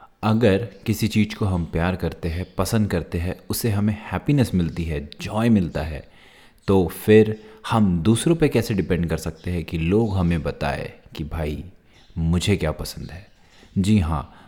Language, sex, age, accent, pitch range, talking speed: Hindi, male, 30-49, native, 85-105 Hz, 170 wpm